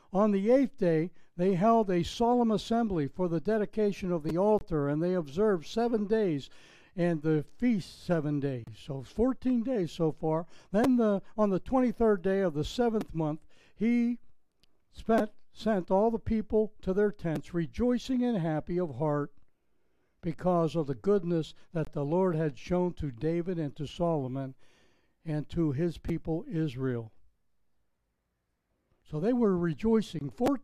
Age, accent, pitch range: 60-79, American, 155-225 Hz